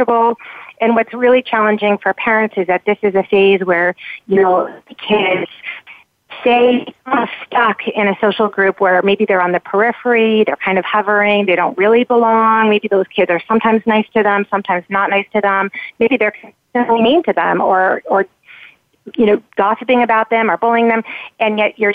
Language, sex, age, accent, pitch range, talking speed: English, female, 30-49, American, 180-220 Hz, 185 wpm